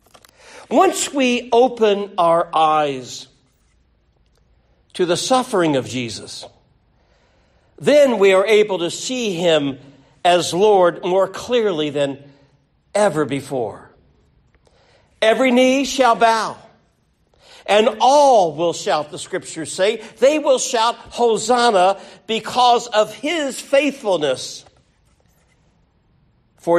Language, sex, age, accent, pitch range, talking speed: English, male, 60-79, American, 135-215 Hz, 100 wpm